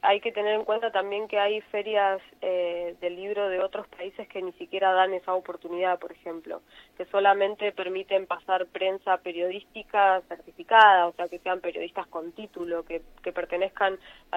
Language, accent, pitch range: Spanish, Argentinian, 180-210 Hz